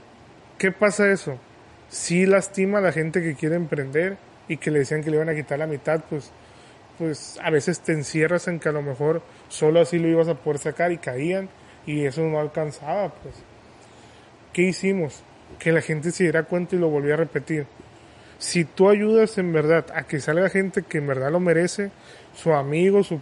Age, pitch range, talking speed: 30-49, 150-180 Hz, 200 wpm